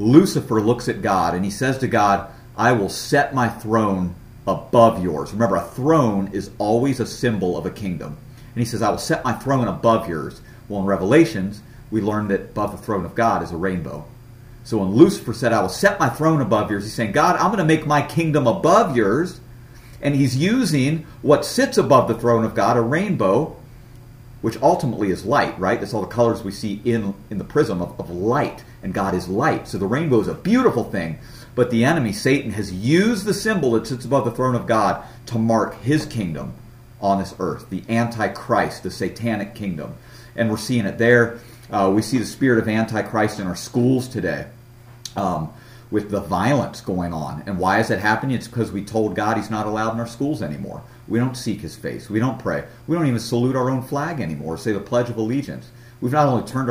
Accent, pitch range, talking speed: American, 105-130 Hz, 215 wpm